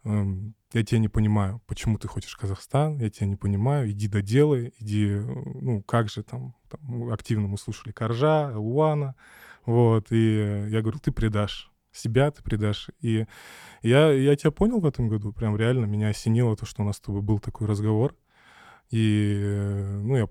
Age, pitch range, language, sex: 20-39, 105-115 Hz, Russian, male